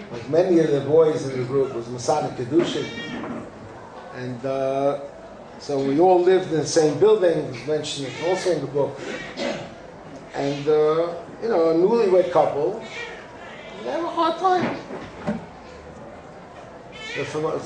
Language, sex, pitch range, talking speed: English, male, 140-185 Hz, 140 wpm